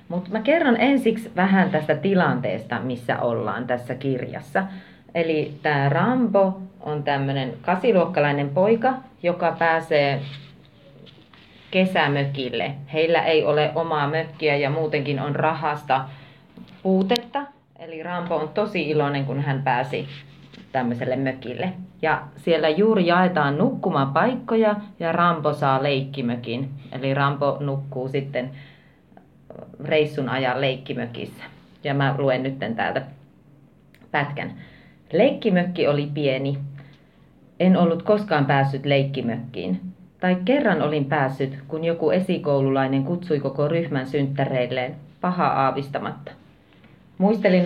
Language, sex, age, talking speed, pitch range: Finnish, female, 30-49, 105 wpm, 135-175 Hz